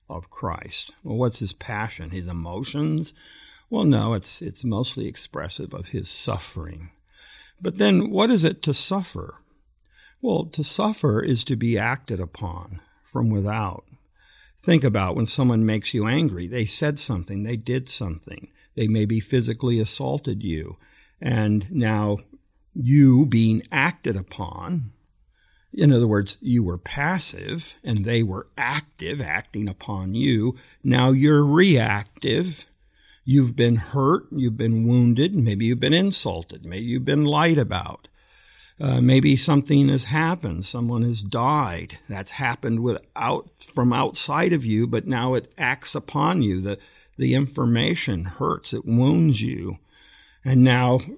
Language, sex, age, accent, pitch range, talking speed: English, male, 50-69, American, 105-140 Hz, 140 wpm